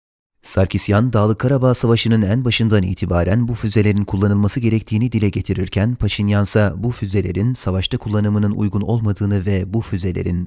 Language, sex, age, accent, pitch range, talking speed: Turkish, male, 30-49, native, 100-120 Hz, 140 wpm